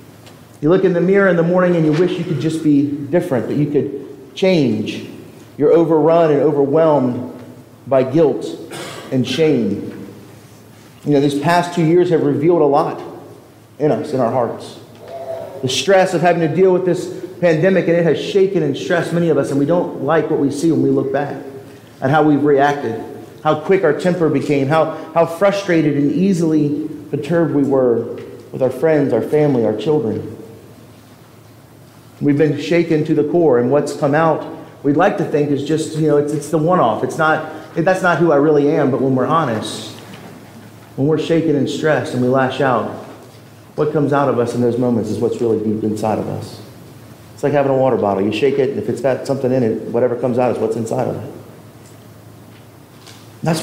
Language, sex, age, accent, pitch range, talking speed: English, male, 40-59, American, 125-165 Hz, 200 wpm